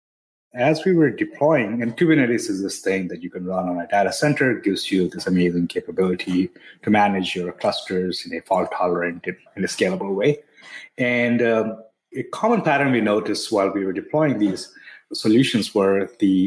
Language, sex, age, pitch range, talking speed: English, male, 30-49, 95-120 Hz, 180 wpm